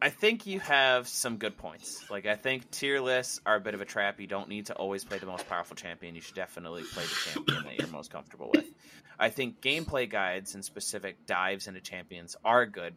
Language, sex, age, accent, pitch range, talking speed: English, male, 20-39, American, 95-125 Hz, 230 wpm